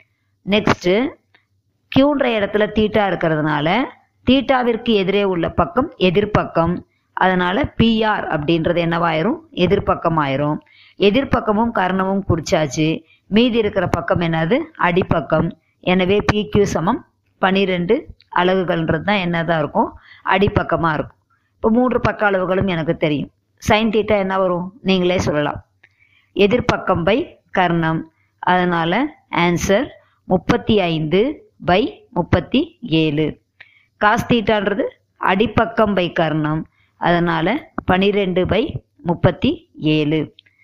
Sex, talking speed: male, 95 wpm